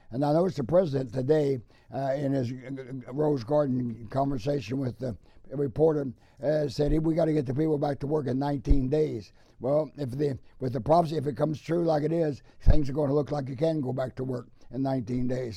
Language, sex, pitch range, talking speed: English, male, 130-155 Hz, 220 wpm